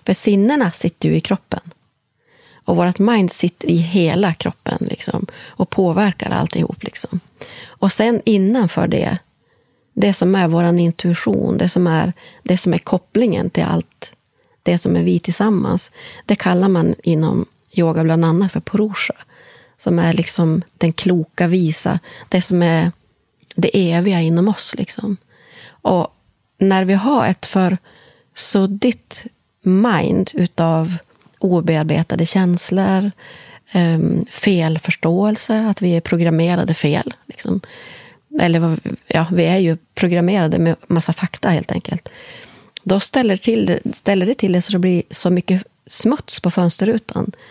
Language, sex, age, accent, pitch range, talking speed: Swedish, female, 30-49, native, 170-200 Hz, 140 wpm